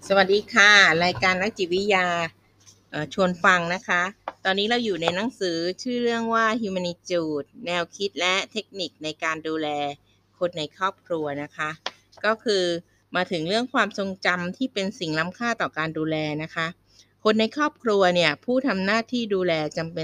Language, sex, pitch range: Thai, female, 155-205 Hz